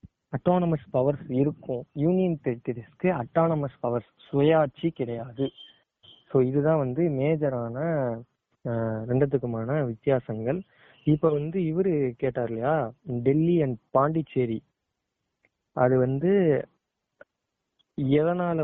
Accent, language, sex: native, Tamil, male